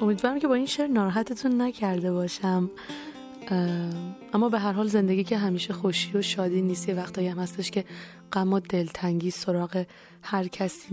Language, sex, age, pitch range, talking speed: Persian, female, 20-39, 180-215 Hz, 160 wpm